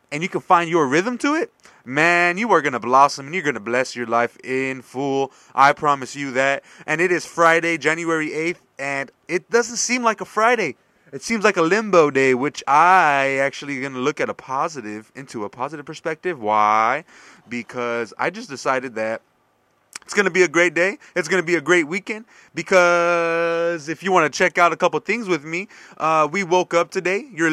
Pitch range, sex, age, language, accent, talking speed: 135-180 Hz, male, 30-49, English, American, 210 wpm